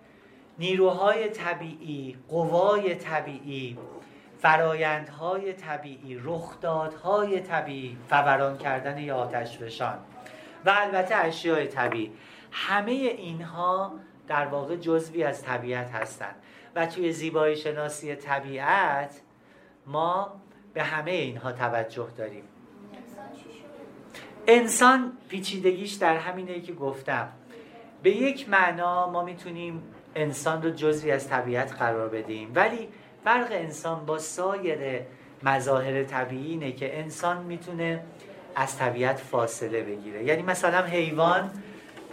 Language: Persian